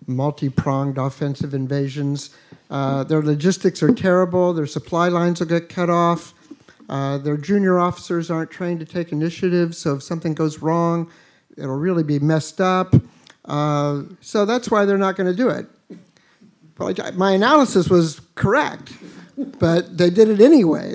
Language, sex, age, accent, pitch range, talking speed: English, male, 50-69, American, 155-195 Hz, 155 wpm